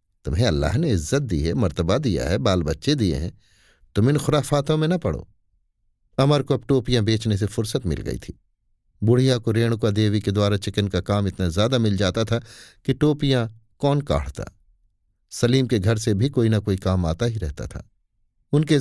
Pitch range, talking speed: 95-125 Hz, 195 wpm